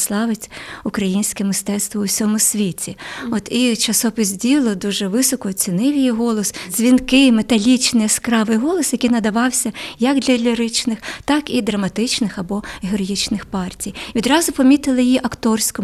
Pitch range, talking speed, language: 210-260 Hz, 130 wpm, Ukrainian